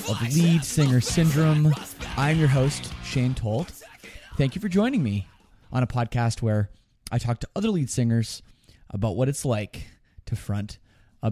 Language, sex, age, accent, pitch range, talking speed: English, male, 20-39, American, 110-160 Hz, 170 wpm